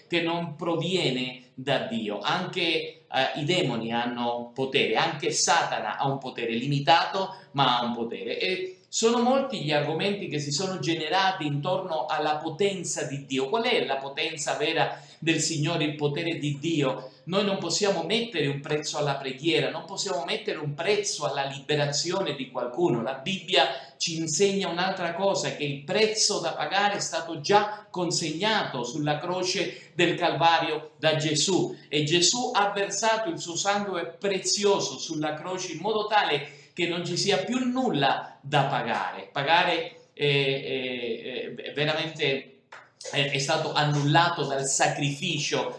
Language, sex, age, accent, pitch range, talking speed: Italian, male, 50-69, native, 145-195 Hz, 150 wpm